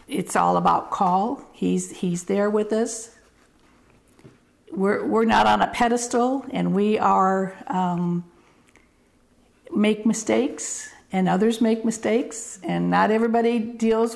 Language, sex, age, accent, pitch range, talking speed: English, female, 50-69, American, 195-240 Hz, 135 wpm